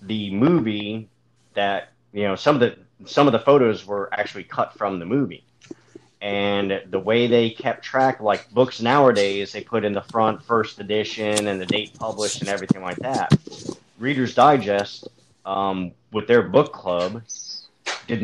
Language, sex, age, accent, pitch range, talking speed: English, male, 30-49, American, 95-115 Hz, 165 wpm